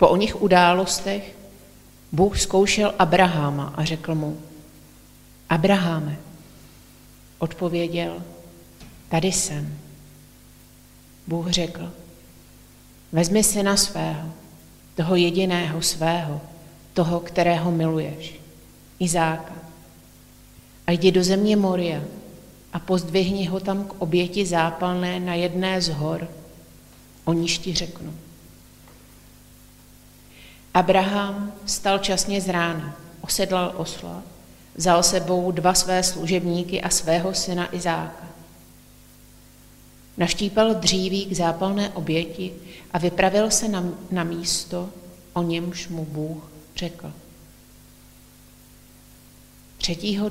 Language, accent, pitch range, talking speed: Czech, native, 160-185 Hz, 90 wpm